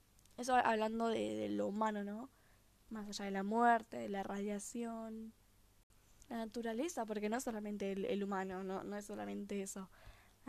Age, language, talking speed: 10-29, Spanish, 170 wpm